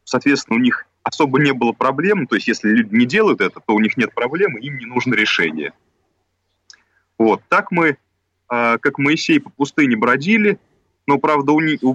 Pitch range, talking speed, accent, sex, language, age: 115-160 Hz, 170 wpm, native, male, Russian, 30-49